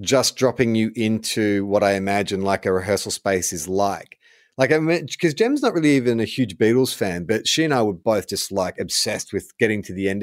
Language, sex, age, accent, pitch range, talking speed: English, male, 30-49, Australian, 110-145 Hz, 230 wpm